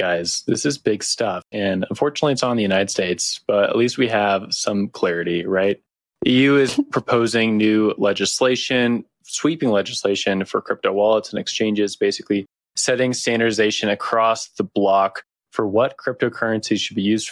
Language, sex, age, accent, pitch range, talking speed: English, male, 20-39, American, 95-115 Hz, 150 wpm